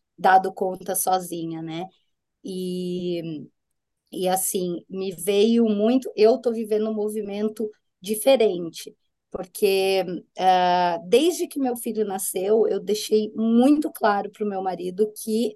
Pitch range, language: 190-230 Hz, Portuguese